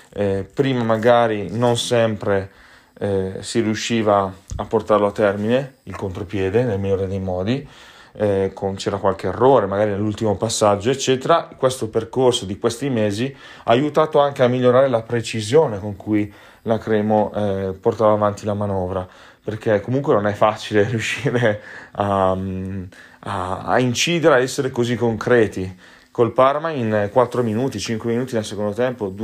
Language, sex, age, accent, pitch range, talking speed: Italian, male, 30-49, native, 100-120 Hz, 150 wpm